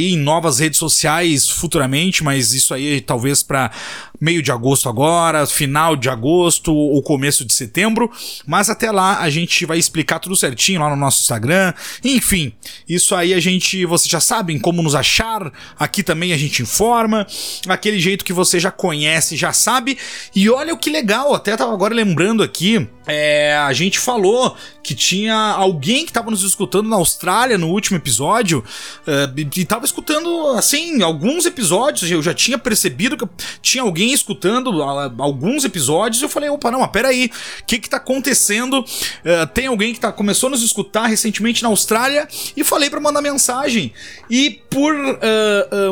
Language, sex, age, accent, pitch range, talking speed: Portuguese, male, 30-49, Brazilian, 160-230 Hz, 175 wpm